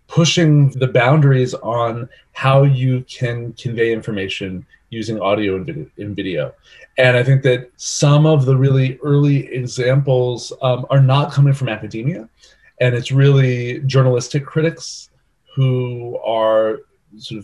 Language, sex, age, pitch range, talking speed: English, male, 30-49, 110-135 Hz, 125 wpm